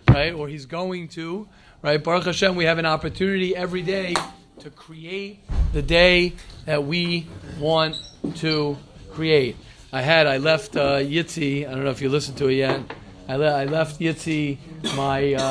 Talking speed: 170 wpm